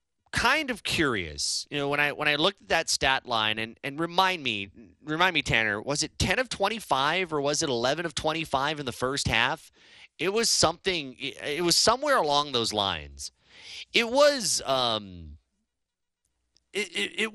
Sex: male